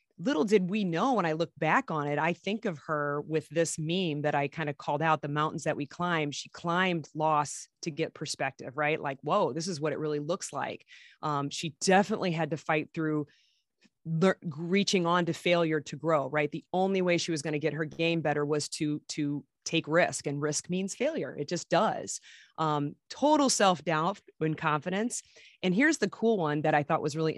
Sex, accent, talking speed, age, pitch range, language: female, American, 210 wpm, 30-49, 150-175 Hz, English